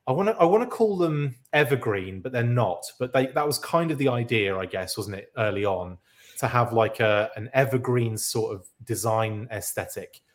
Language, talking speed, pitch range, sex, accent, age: English, 210 wpm, 105-135 Hz, male, British, 30-49